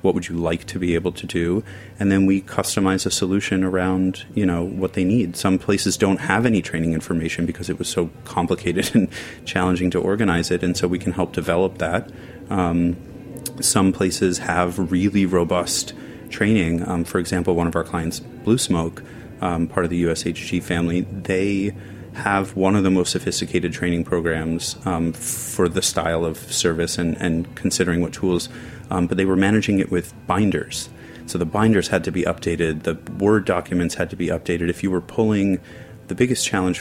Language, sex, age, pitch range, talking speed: English, male, 30-49, 85-100 Hz, 190 wpm